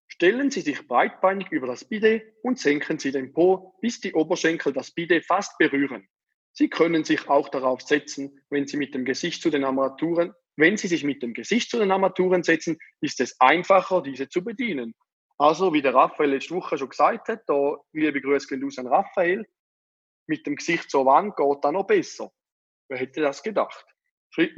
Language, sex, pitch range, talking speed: German, male, 140-190 Hz, 185 wpm